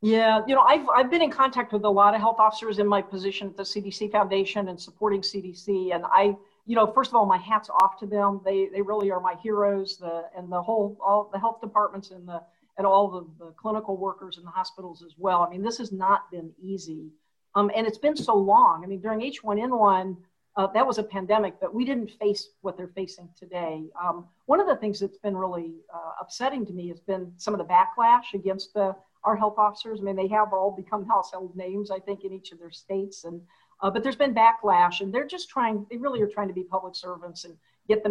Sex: female